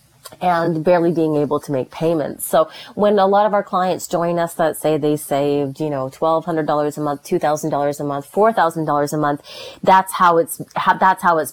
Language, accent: English, American